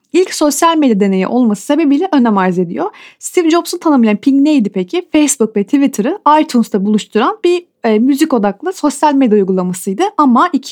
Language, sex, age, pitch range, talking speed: Turkish, female, 30-49, 210-305 Hz, 160 wpm